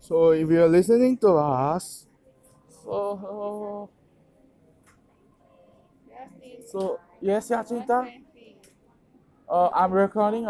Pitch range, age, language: 160-215 Hz, 20-39, English